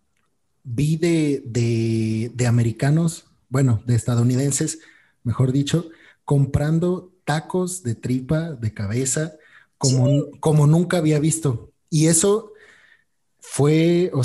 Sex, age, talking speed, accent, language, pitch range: male, 30-49, 105 wpm, Mexican, Spanish, 120-155 Hz